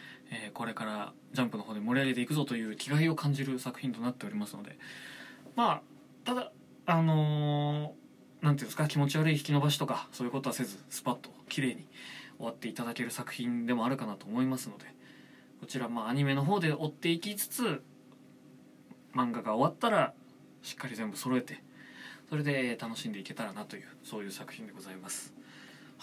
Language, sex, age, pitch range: Japanese, male, 20-39, 125-160 Hz